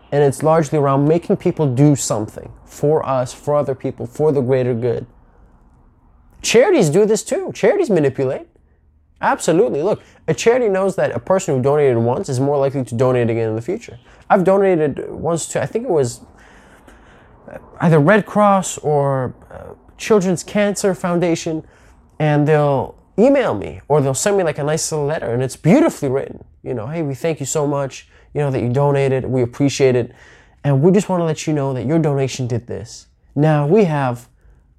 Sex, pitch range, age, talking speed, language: male, 130-180 Hz, 20-39, 185 wpm, English